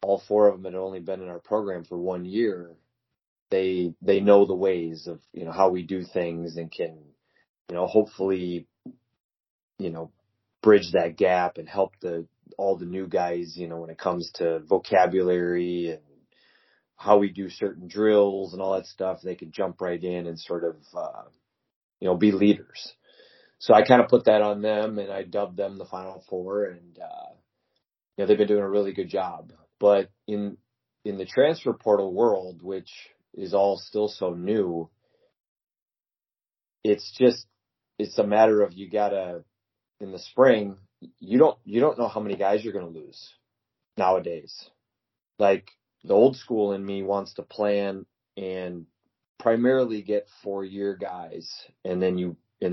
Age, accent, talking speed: 30-49, American, 175 wpm